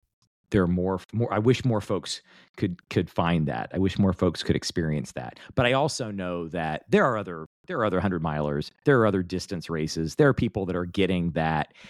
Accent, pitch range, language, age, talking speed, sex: American, 80-105 Hz, English, 40-59, 220 wpm, male